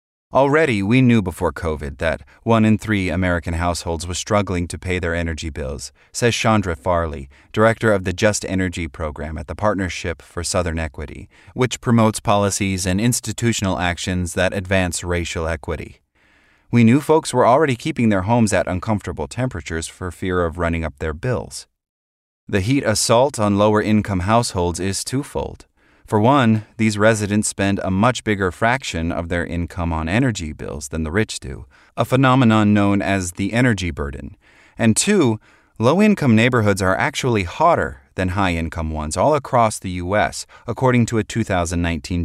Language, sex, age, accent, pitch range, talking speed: English, male, 30-49, American, 85-110 Hz, 160 wpm